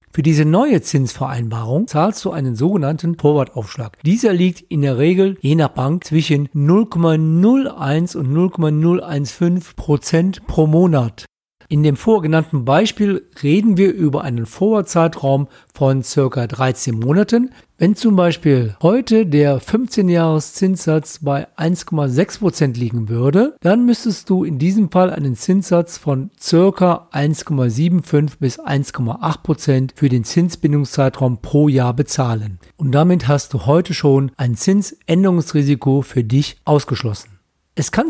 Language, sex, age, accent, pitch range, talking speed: German, male, 40-59, German, 135-180 Hz, 125 wpm